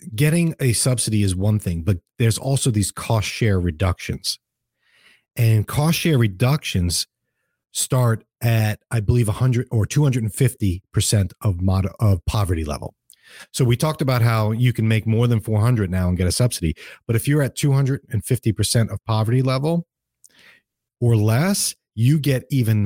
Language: English